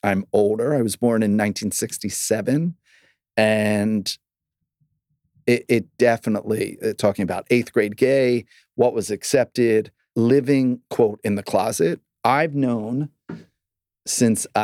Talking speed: 110 wpm